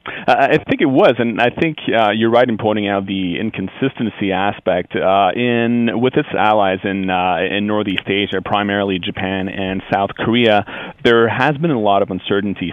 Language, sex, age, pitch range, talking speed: English, male, 30-49, 100-115 Hz, 185 wpm